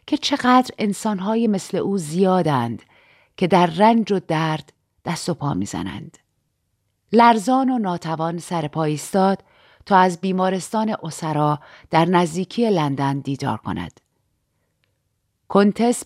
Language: Persian